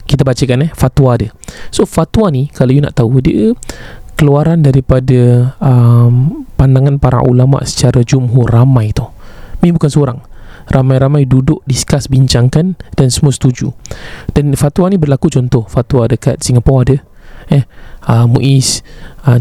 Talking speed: 140 wpm